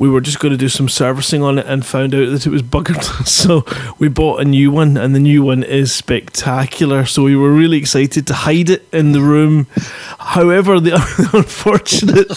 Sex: male